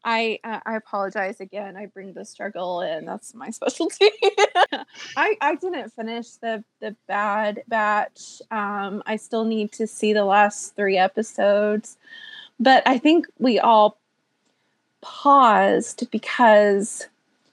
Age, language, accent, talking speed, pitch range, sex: 20-39, English, American, 130 wpm, 215-270 Hz, female